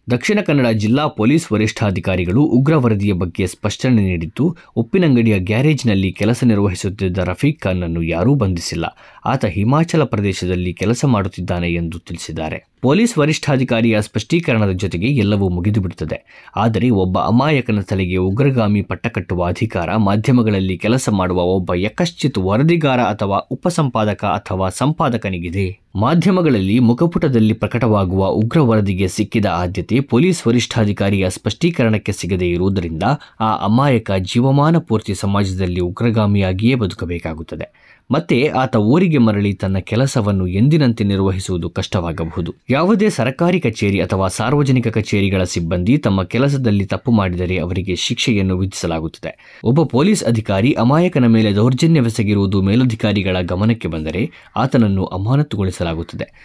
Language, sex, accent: Kannada, male, native